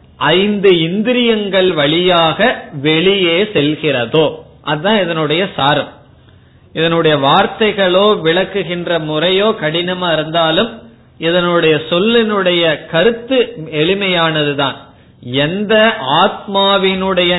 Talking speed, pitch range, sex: 60 wpm, 160-210 Hz, male